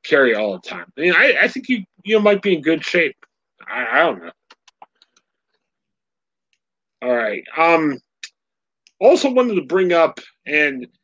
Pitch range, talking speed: 155-230 Hz, 165 wpm